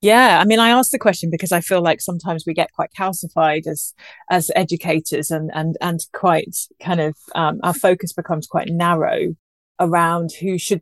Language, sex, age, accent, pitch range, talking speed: English, female, 30-49, British, 160-185 Hz, 190 wpm